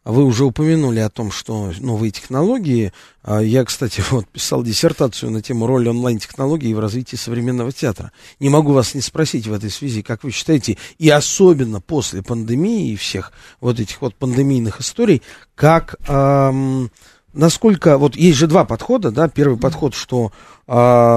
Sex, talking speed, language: male, 160 wpm, Russian